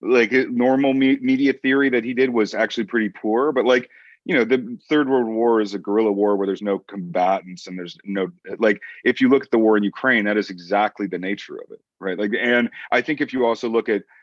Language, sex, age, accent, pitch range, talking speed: English, male, 30-49, American, 100-130 Hz, 235 wpm